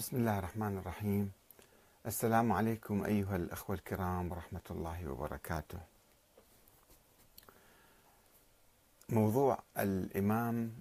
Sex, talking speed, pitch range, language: male, 80 wpm, 90-115 Hz, Arabic